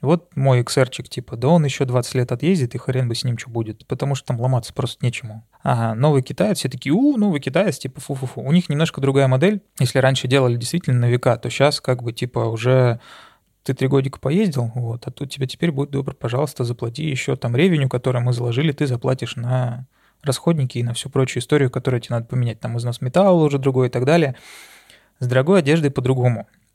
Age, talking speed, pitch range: 20-39, 210 wpm, 120-145 Hz